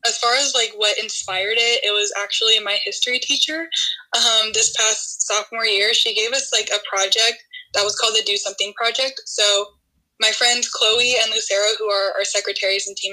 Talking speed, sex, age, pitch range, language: 195 wpm, female, 10-29, 205-240 Hz, English